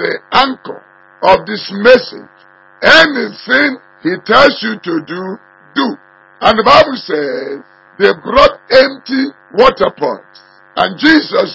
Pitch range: 185-270 Hz